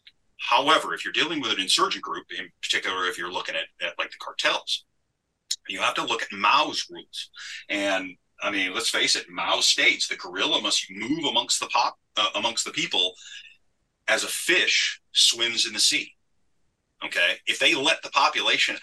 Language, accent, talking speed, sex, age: English, American, 180 wpm, male, 30-49